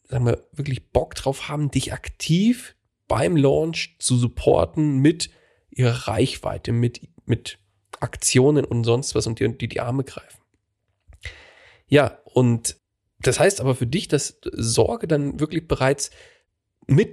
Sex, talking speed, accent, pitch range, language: male, 140 wpm, German, 115-145 Hz, German